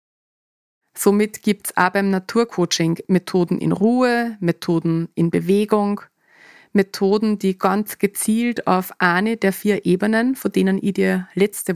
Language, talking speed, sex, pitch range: German, 135 wpm, female, 180-215 Hz